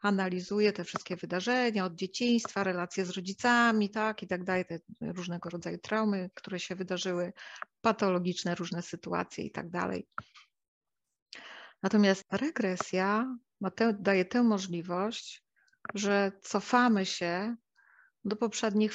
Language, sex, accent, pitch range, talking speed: Polish, female, native, 180-220 Hz, 115 wpm